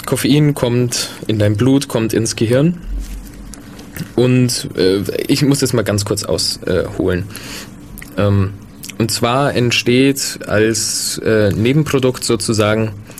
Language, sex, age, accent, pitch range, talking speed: German, male, 20-39, German, 105-125 Hz, 120 wpm